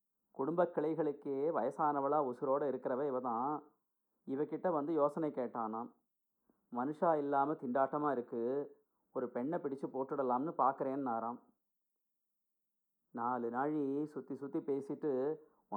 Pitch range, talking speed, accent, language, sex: 120-150 Hz, 100 wpm, native, Tamil, male